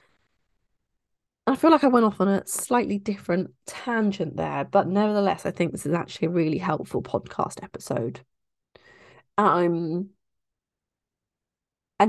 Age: 20-39